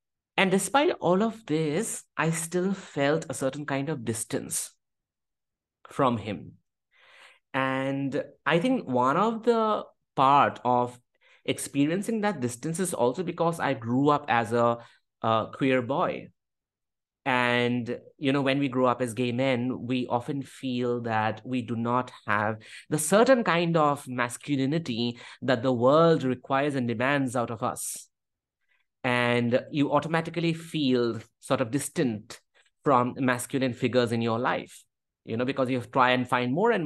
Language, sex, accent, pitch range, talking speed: English, male, Indian, 120-145 Hz, 150 wpm